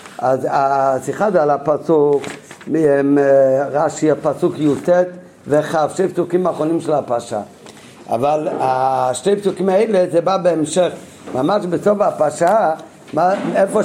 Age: 50-69